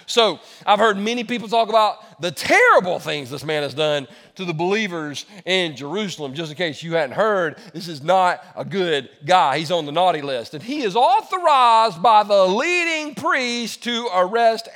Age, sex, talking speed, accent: 40-59, male, 185 wpm, American